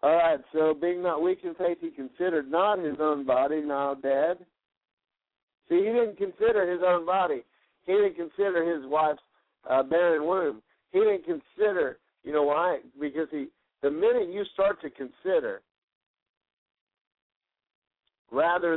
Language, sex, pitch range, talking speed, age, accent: English, male, 150-190 Hz, 145 wpm, 60-79, American